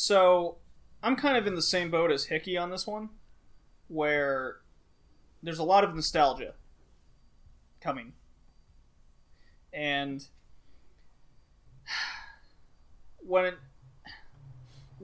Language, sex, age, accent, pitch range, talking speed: English, male, 20-39, American, 130-170 Hz, 90 wpm